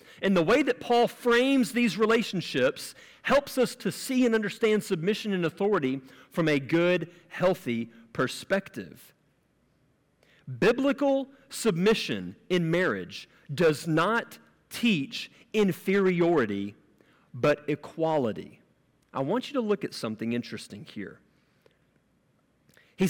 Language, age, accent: English, 40-59, American